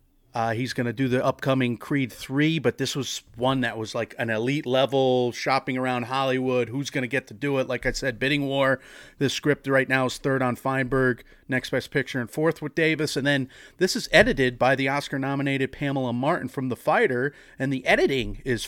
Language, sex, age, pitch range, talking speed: English, male, 30-49, 120-150 Hz, 210 wpm